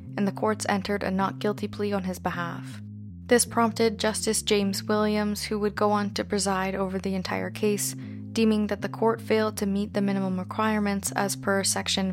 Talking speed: 195 wpm